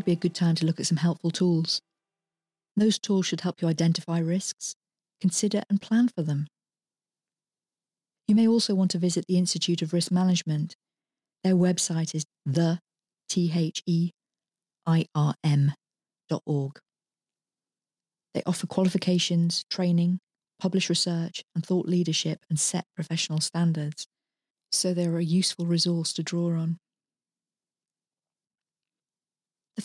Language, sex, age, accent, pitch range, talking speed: English, female, 40-59, British, 160-185 Hz, 120 wpm